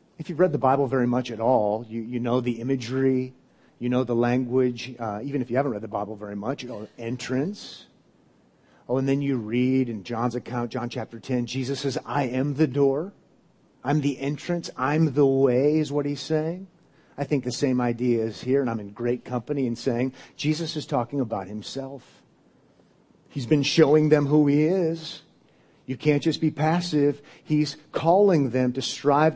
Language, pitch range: English, 125-155 Hz